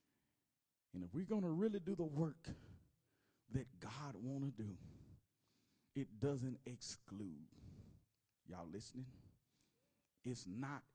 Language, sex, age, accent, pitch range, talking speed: English, male, 40-59, American, 100-125 Hz, 115 wpm